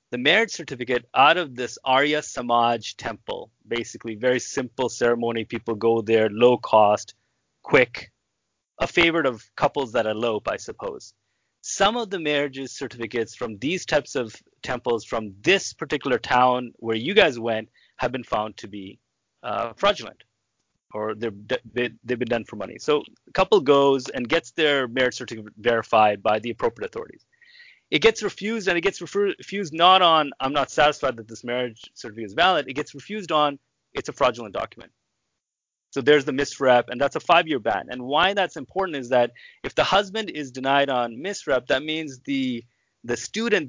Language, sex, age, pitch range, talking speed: English, male, 30-49, 115-150 Hz, 175 wpm